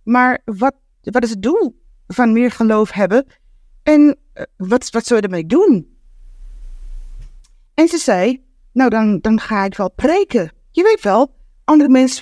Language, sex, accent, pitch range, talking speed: Dutch, female, Dutch, 210-270 Hz, 155 wpm